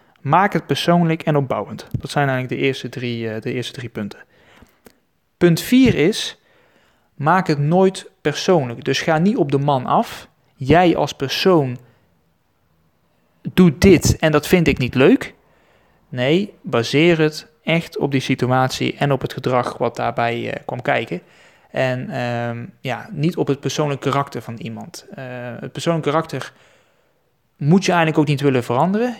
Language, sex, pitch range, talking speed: Dutch, male, 125-160 Hz, 150 wpm